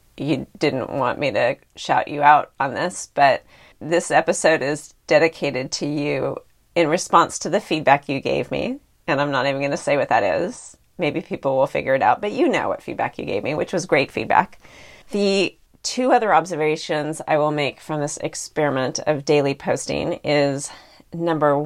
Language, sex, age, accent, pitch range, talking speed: English, female, 40-59, American, 140-165 Hz, 190 wpm